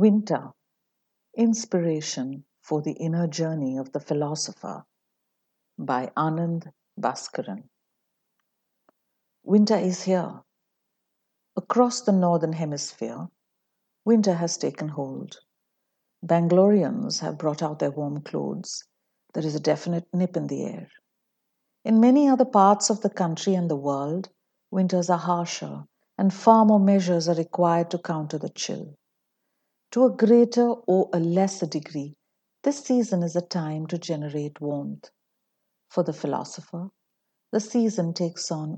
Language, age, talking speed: English, 60-79, 130 wpm